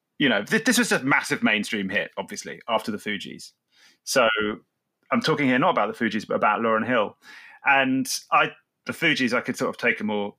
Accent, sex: British, male